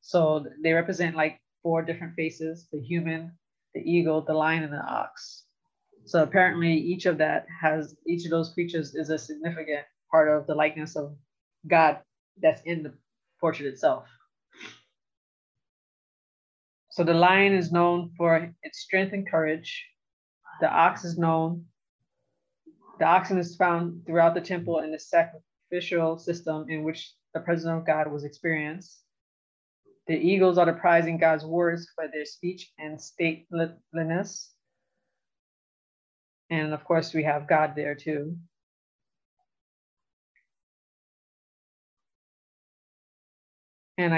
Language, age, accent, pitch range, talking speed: English, 20-39, American, 155-175 Hz, 130 wpm